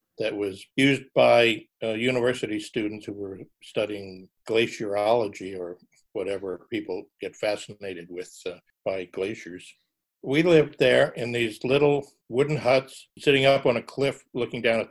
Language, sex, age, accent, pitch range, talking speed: English, male, 60-79, American, 105-135 Hz, 145 wpm